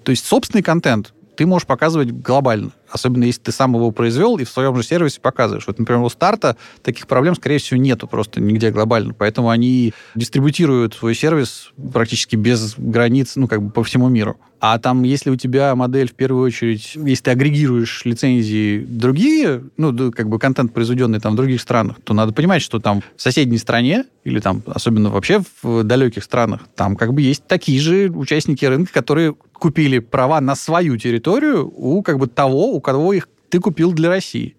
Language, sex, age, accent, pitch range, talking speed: Russian, male, 20-39, native, 115-150 Hz, 185 wpm